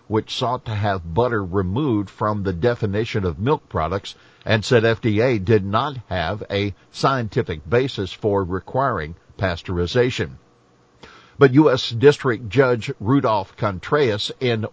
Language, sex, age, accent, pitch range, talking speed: English, male, 60-79, American, 95-120 Hz, 125 wpm